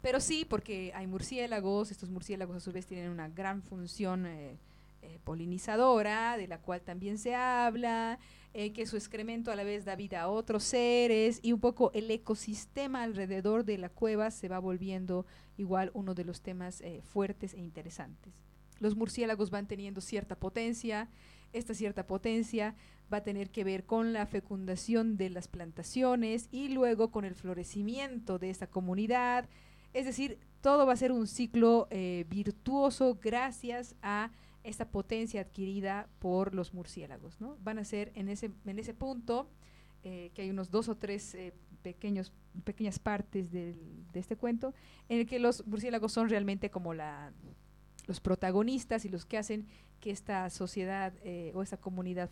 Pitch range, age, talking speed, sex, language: 185-230 Hz, 40-59, 165 wpm, female, Spanish